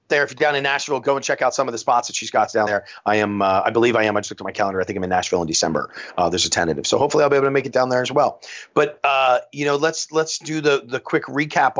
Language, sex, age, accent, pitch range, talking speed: English, male, 40-59, American, 105-145 Hz, 335 wpm